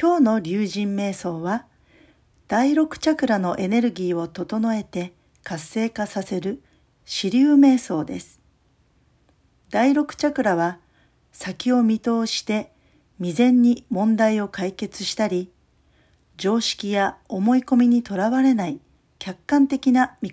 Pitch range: 190-250 Hz